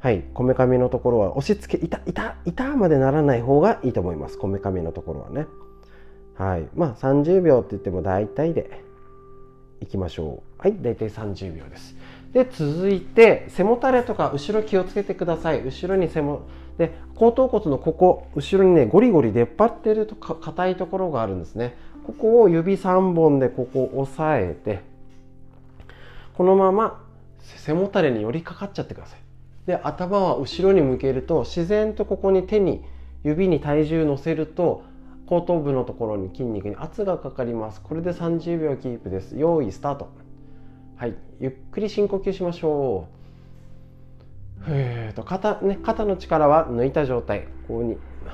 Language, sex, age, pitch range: Japanese, male, 40-59, 115-185 Hz